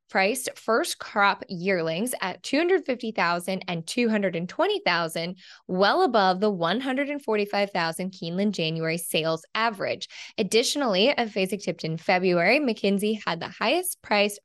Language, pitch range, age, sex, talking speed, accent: English, 180-235 Hz, 10-29, female, 110 wpm, American